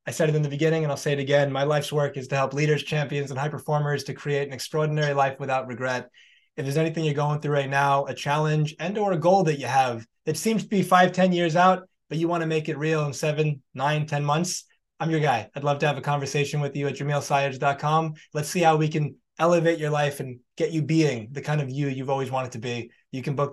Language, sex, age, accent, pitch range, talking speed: English, male, 20-39, American, 135-155 Hz, 265 wpm